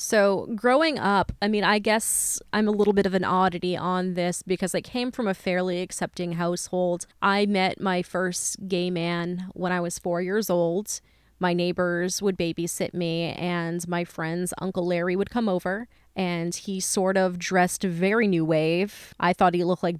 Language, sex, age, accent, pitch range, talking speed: English, female, 20-39, American, 175-200 Hz, 185 wpm